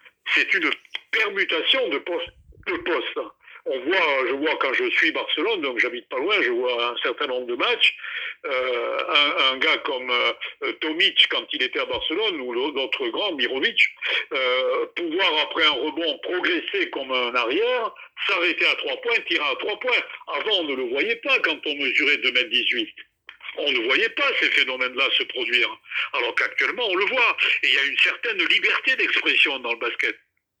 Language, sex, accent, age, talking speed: French, male, French, 60-79, 185 wpm